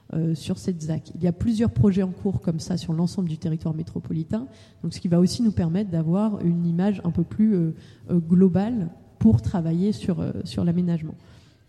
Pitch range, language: 165-195 Hz, French